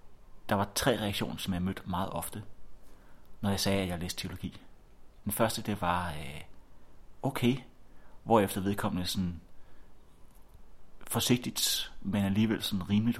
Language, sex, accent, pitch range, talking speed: Danish, male, native, 90-115 Hz, 135 wpm